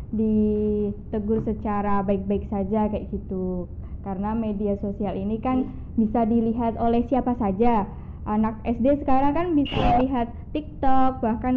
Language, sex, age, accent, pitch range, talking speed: Indonesian, female, 20-39, native, 205-245 Hz, 125 wpm